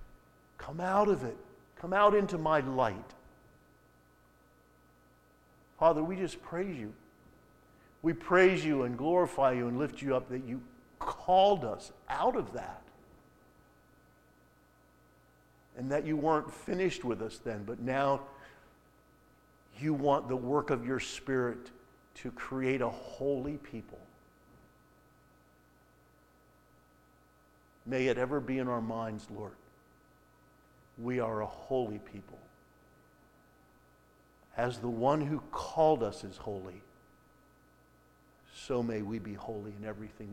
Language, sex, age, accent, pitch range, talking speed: English, male, 50-69, American, 105-140 Hz, 120 wpm